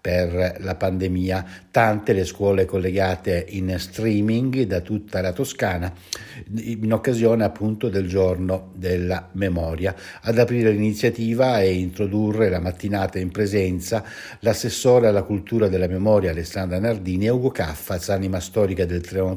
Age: 60-79